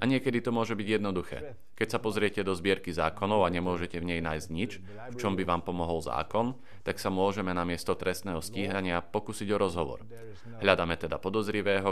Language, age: Slovak, 40-59